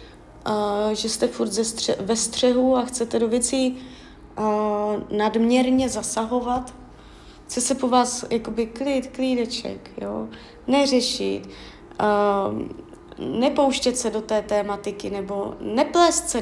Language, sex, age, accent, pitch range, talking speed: Czech, female, 20-39, native, 210-260 Hz, 120 wpm